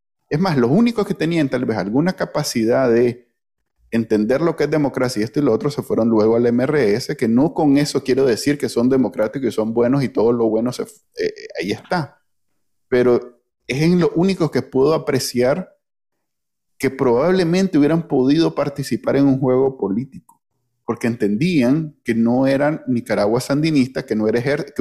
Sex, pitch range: male, 115-150 Hz